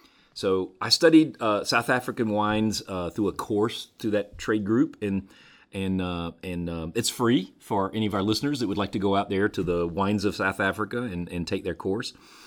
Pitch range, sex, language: 90-110 Hz, male, English